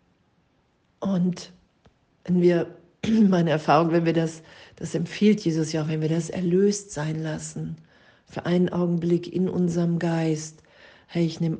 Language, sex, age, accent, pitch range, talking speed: German, female, 50-69, German, 155-170 Hz, 145 wpm